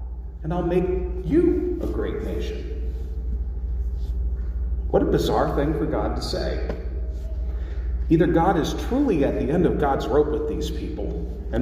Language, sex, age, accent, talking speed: English, male, 40-59, American, 150 wpm